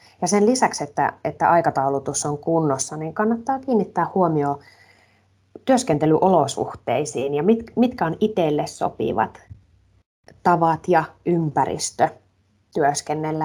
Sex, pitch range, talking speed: female, 150-195 Hz, 100 wpm